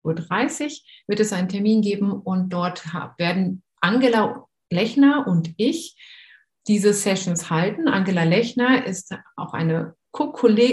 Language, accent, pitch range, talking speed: German, German, 180-235 Hz, 115 wpm